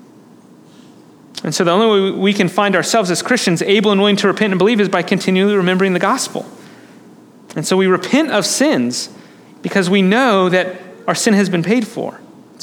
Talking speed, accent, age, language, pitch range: 195 wpm, American, 30-49, English, 180-225 Hz